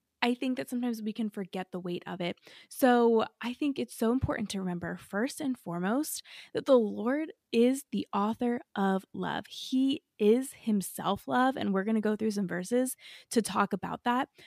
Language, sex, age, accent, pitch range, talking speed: English, female, 20-39, American, 195-245 Hz, 190 wpm